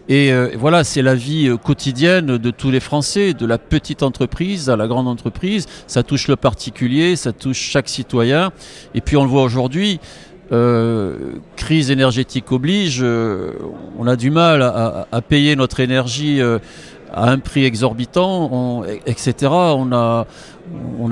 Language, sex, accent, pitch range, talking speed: French, male, French, 125-155 Hz, 150 wpm